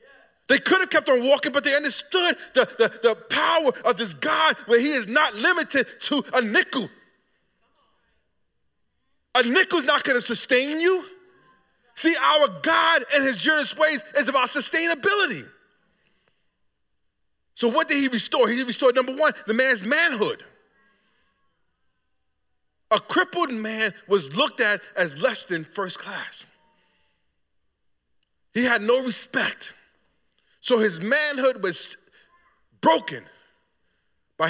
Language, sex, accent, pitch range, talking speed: English, male, American, 195-300 Hz, 130 wpm